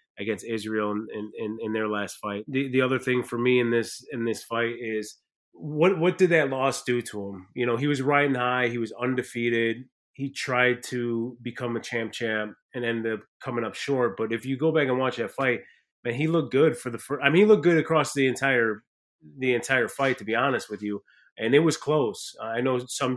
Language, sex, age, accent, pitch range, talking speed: English, male, 30-49, American, 115-130 Hz, 230 wpm